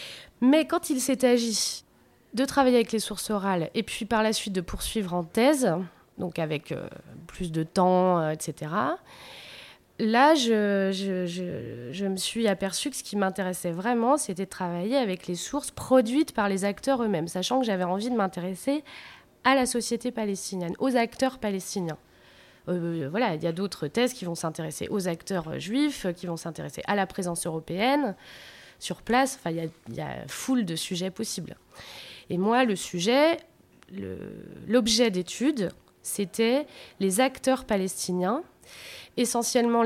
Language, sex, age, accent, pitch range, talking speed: French, female, 20-39, French, 180-245 Hz, 160 wpm